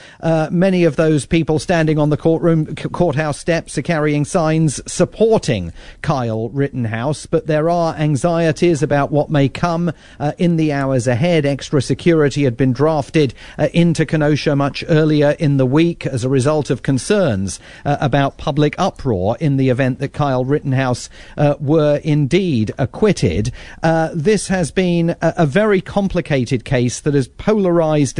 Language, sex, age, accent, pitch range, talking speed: English, male, 40-59, British, 135-175 Hz, 160 wpm